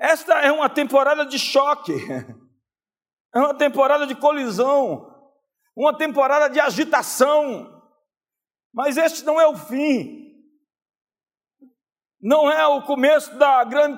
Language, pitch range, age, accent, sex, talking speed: Portuguese, 260-315 Hz, 60-79, Brazilian, male, 115 wpm